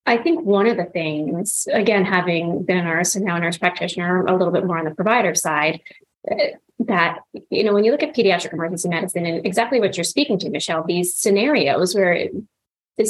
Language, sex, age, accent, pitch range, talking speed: English, female, 30-49, American, 180-230 Hz, 205 wpm